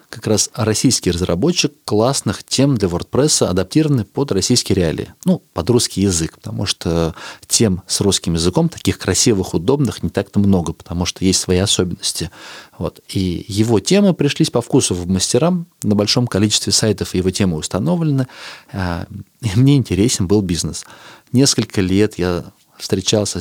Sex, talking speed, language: male, 145 wpm, Russian